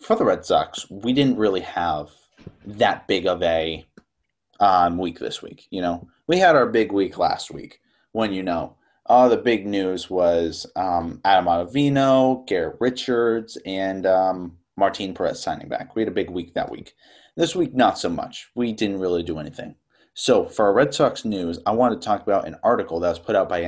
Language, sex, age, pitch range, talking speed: English, male, 30-49, 85-120 Hz, 205 wpm